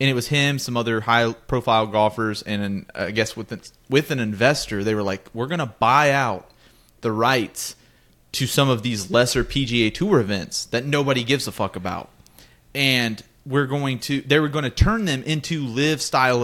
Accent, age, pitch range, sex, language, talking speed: American, 30-49, 115-145 Hz, male, English, 195 wpm